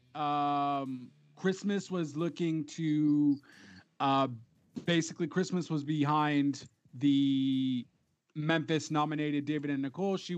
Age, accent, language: 30-49, American, English